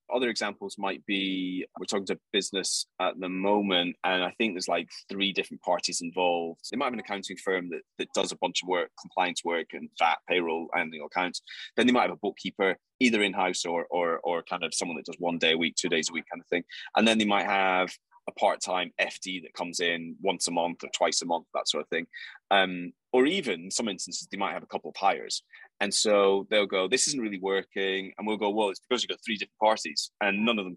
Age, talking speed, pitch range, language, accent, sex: 20-39, 245 wpm, 90-110 Hz, English, British, male